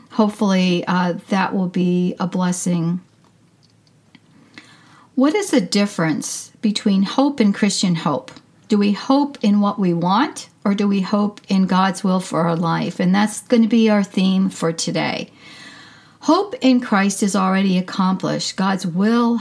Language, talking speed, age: English, 155 wpm, 50-69